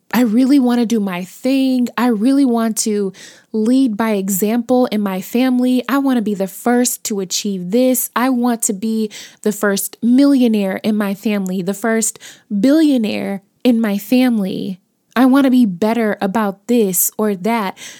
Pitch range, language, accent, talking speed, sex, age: 200-245 Hz, English, American, 170 wpm, female, 20-39